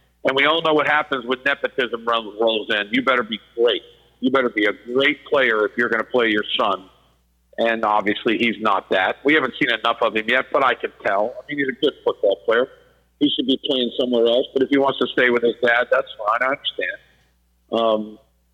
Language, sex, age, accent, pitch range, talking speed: English, male, 50-69, American, 105-140 Hz, 225 wpm